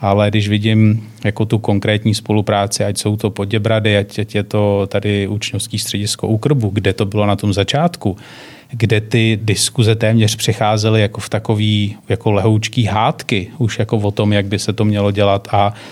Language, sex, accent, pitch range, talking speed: Czech, male, native, 105-115 Hz, 160 wpm